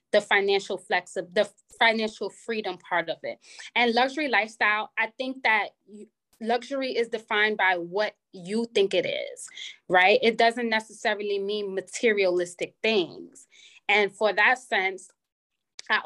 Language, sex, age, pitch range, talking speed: English, female, 20-39, 195-245 Hz, 140 wpm